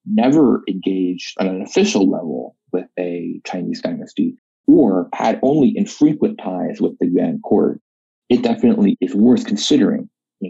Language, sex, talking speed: English, male, 145 wpm